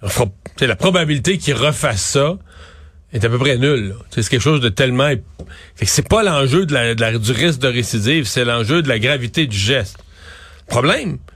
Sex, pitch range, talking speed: male, 115-165 Hz, 190 wpm